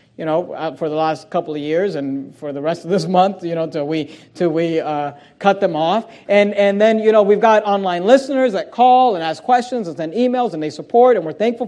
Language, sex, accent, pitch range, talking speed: English, male, American, 185-240 Hz, 245 wpm